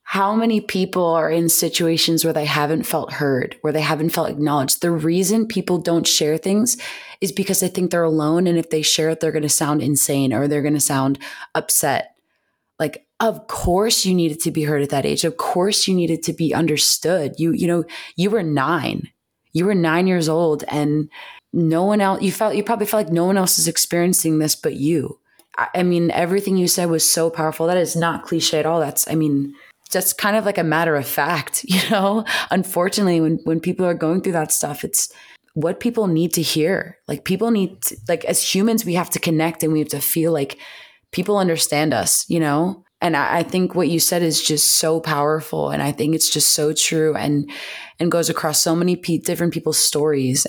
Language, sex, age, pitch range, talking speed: English, female, 20-39, 155-180 Hz, 215 wpm